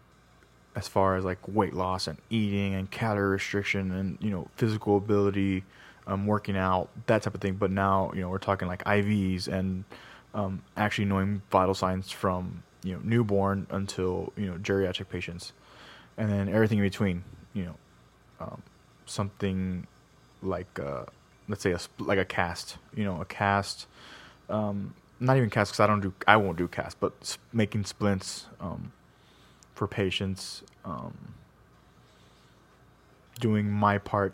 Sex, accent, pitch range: male, American, 95-105 Hz